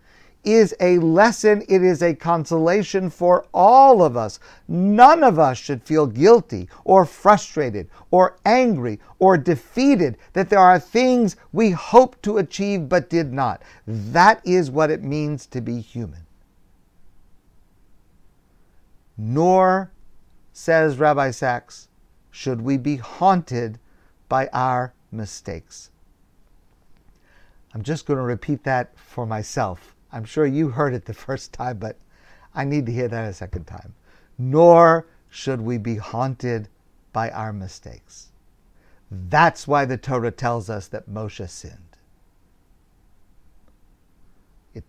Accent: American